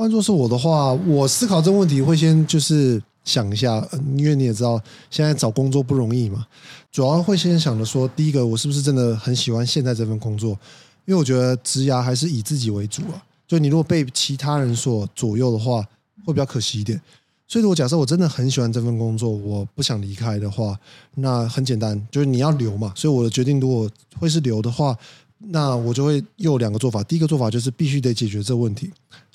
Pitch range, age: 115-150 Hz, 20-39